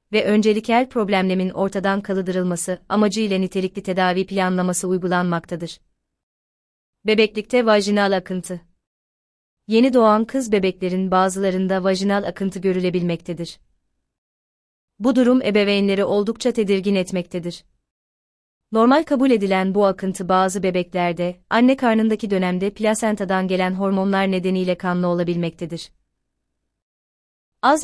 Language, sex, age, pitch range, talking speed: Turkish, female, 30-49, 175-210 Hz, 95 wpm